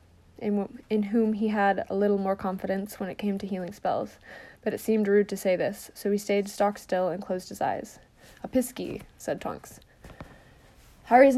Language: English